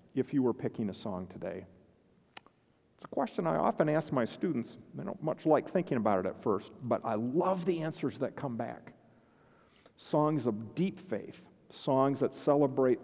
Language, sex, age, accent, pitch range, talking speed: English, male, 50-69, American, 120-155 Hz, 180 wpm